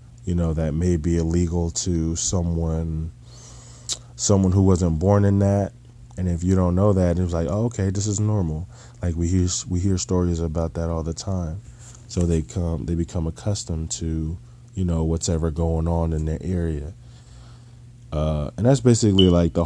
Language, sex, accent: English, male, American